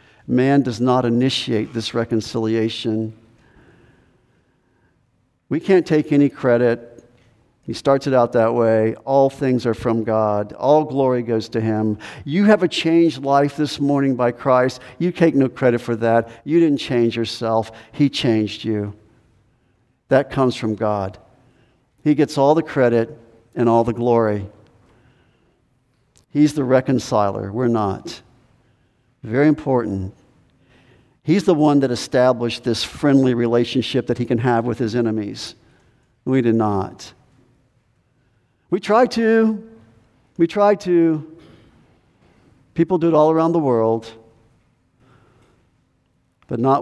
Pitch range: 115-135 Hz